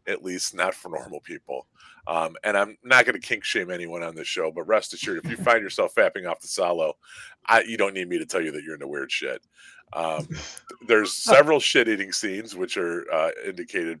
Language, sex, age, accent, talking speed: English, male, 40-59, American, 215 wpm